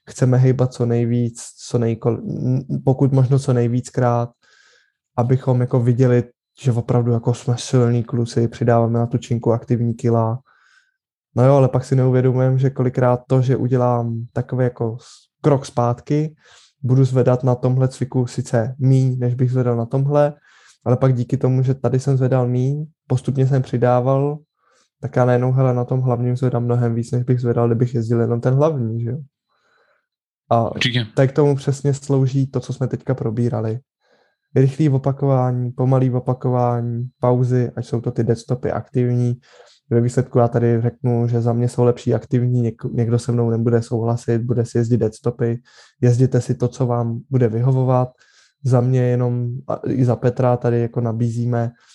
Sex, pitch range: male, 120-130 Hz